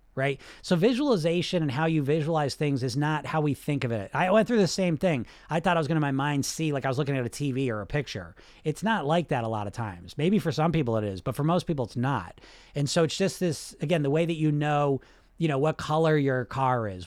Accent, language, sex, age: American, English, male, 40-59